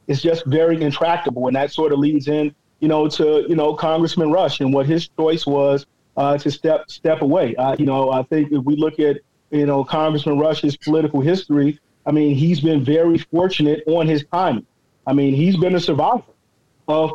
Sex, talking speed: male, 205 wpm